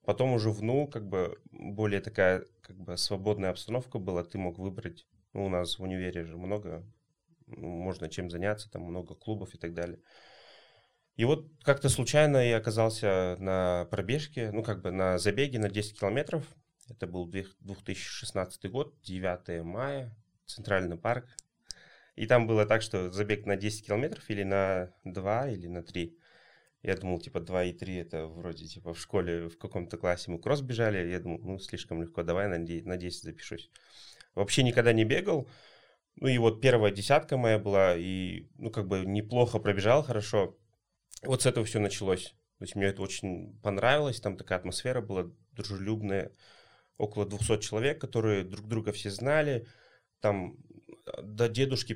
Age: 30-49